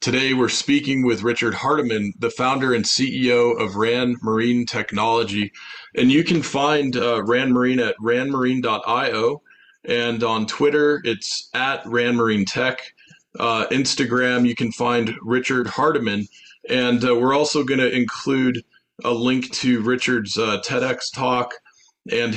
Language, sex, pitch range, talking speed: English, male, 115-130 Hz, 130 wpm